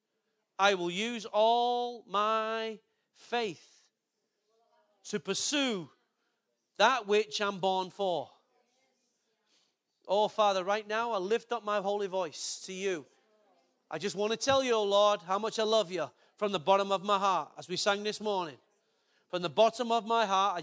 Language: English